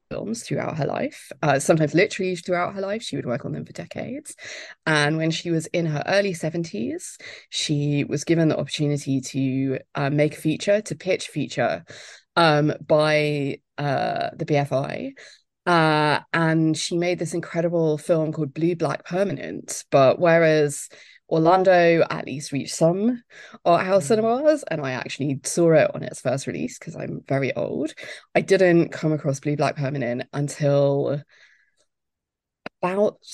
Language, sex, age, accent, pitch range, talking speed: English, female, 20-39, British, 145-175 Hz, 155 wpm